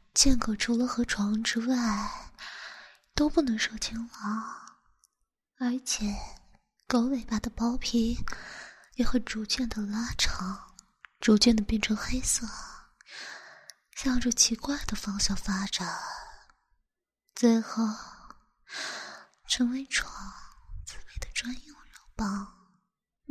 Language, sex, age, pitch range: Chinese, female, 20-39, 205-255 Hz